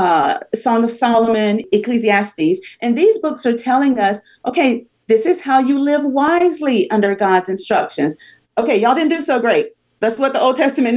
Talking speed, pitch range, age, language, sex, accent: 175 wpm, 210-280 Hz, 40-59, English, female, American